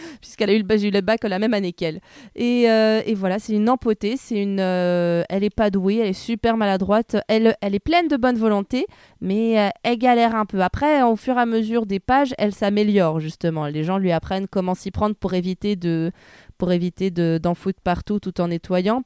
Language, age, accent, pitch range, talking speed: French, 20-39, French, 190-230 Hz, 220 wpm